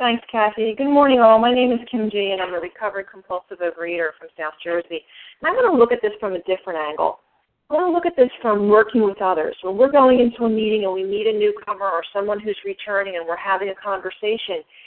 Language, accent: English, American